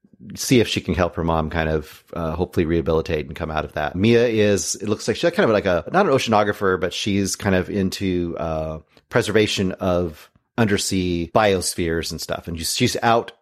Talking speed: 200 wpm